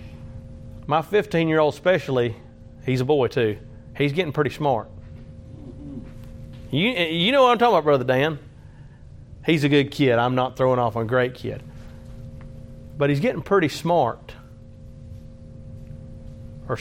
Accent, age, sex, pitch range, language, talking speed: American, 40-59, male, 120-150 Hz, English, 130 wpm